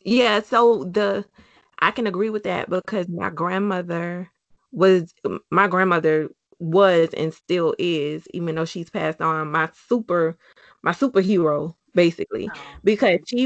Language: English